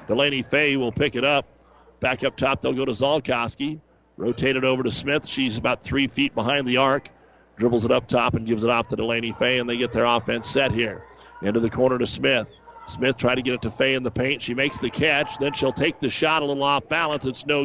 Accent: American